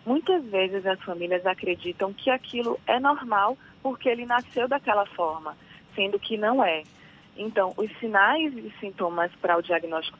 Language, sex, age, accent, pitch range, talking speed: Portuguese, female, 20-39, Brazilian, 170-225 Hz, 155 wpm